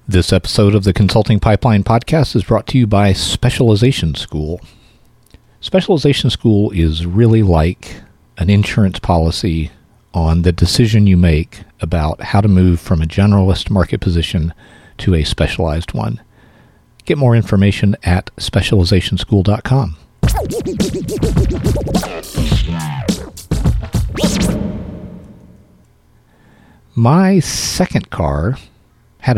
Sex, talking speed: male, 100 wpm